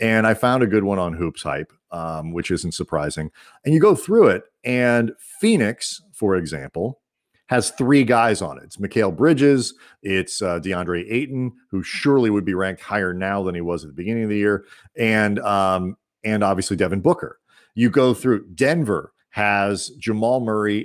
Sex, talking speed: male, 180 wpm